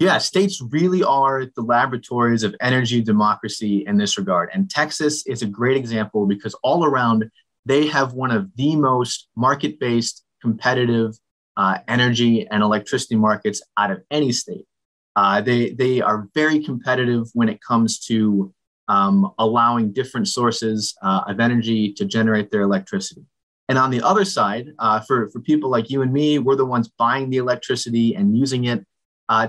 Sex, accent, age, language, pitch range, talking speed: male, American, 30-49, English, 110-140 Hz, 165 wpm